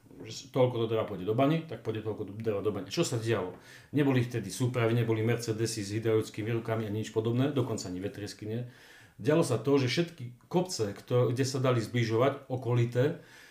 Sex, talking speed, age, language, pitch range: male, 195 wpm, 40-59, Slovak, 110-135 Hz